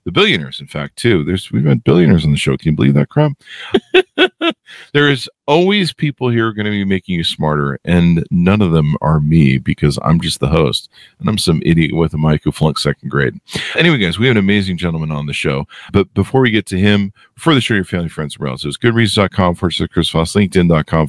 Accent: American